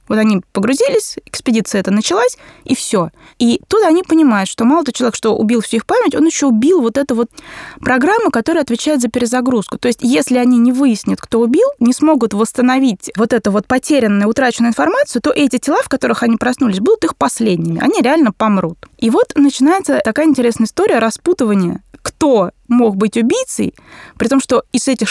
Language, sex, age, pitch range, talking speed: Russian, female, 20-39, 220-280 Hz, 185 wpm